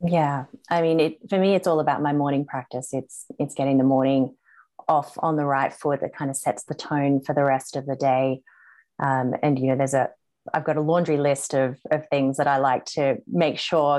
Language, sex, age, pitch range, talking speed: English, female, 30-49, 130-150 Hz, 230 wpm